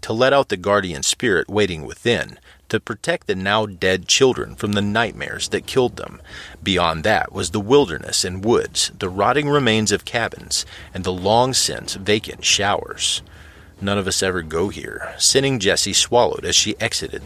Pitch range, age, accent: 85-110 Hz, 40-59, American